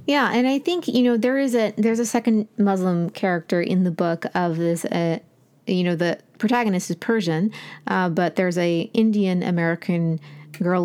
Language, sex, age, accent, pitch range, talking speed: English, female, 30-49, American, 170-210 Hz, 185 wpm